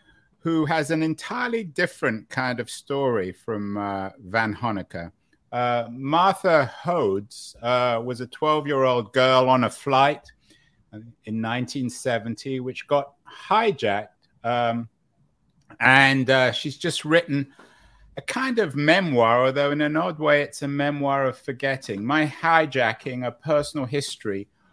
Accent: British